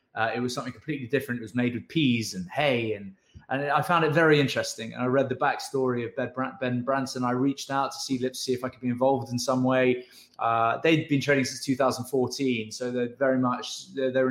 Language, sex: English, male